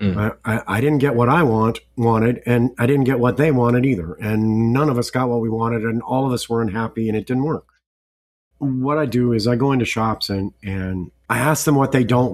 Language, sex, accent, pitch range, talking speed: English, male, American, 100-135 Hz, 245 wpm